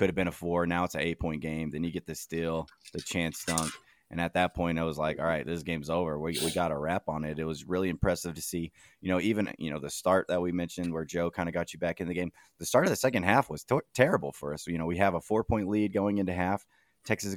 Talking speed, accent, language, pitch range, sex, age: 295 wpm, American, English, 80-90 Hz, male, 20-39